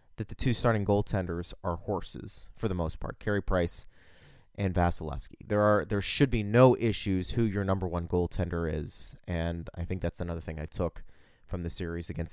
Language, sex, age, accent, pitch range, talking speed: English, male, 30-49, American, 90-120 Hz, 195 wpm